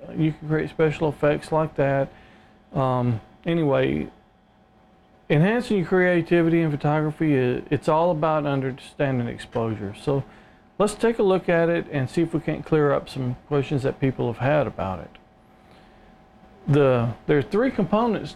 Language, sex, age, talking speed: English, male, 40-59, 150 wpm